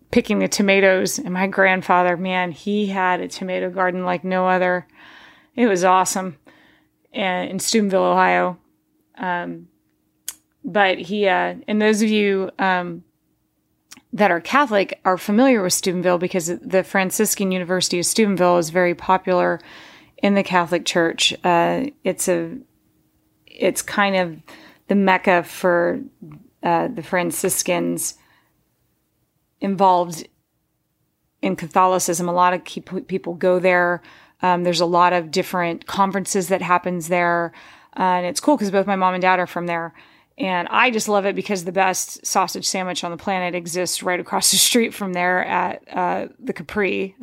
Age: 30-49